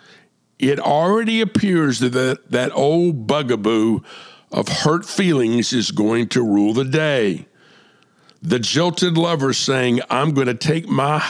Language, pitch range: English, 115-150 Hz